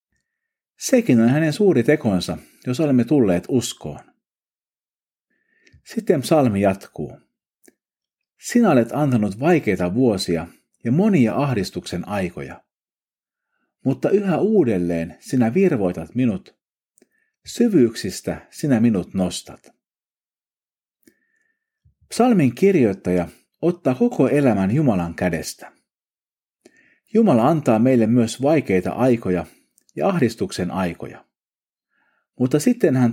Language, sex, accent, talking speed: Finnish, male, native, 90 wpm